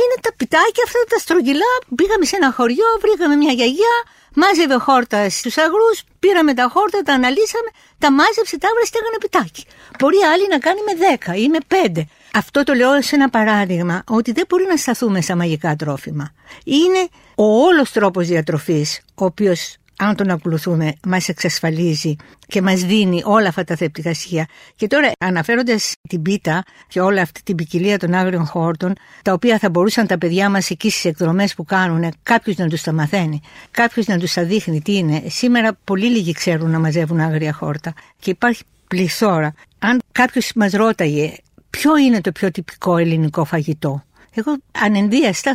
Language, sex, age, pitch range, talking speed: Greek, female, 60-79, 170-255 Hz, 175 wpm